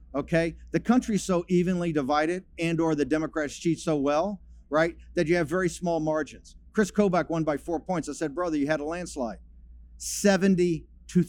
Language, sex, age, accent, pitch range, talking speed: English, male, 50-69, American, 150-190 Hz, 180 wpm